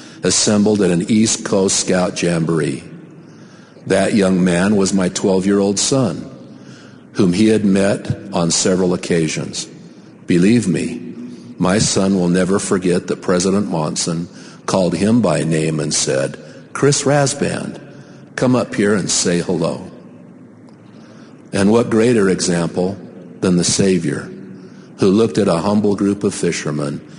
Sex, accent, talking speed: male, American, 130 wpm